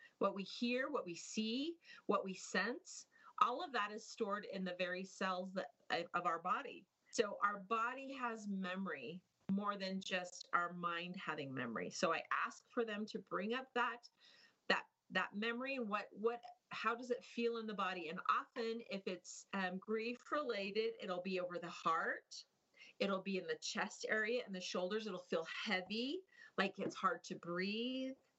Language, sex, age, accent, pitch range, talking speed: English, female, 40-59, American, 185-230 Hz, 180 wpm